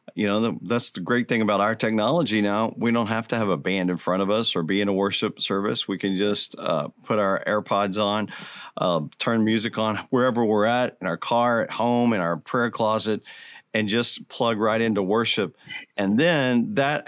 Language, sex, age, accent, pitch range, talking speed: English, male, 40-59, American, 100-115 Hz, 210 wpm